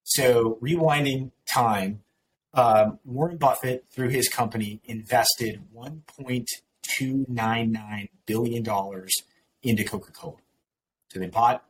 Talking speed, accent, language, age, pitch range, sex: 85 wpm, American, English, 30-49, 105-130 Hz, male